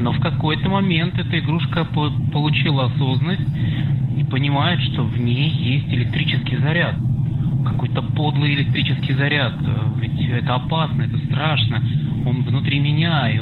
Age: 20-39